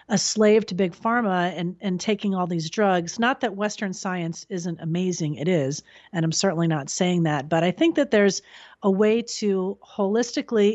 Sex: female